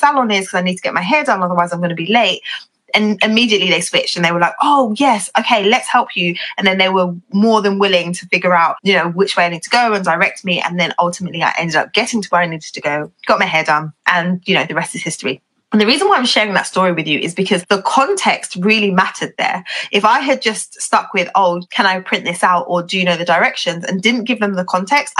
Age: 20-39